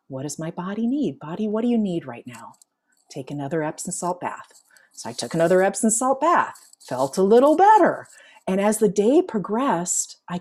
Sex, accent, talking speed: female, American, 195 wpm